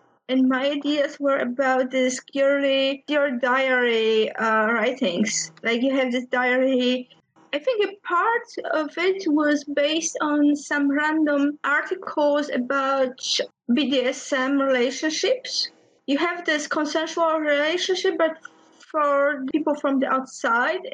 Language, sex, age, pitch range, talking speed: English, female, 30-49, 260-310 Hz, 120 wpm